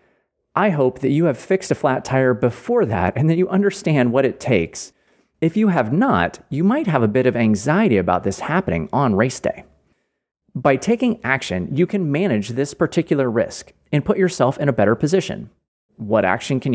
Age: 30-49